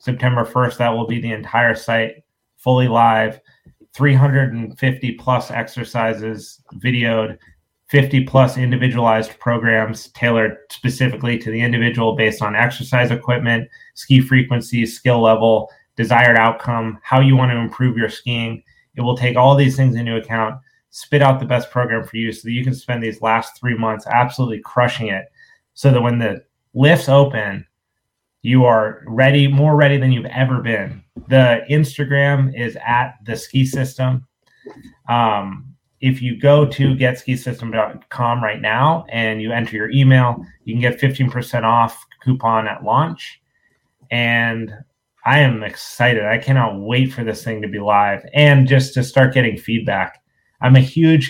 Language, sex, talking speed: English, male, 155 wpm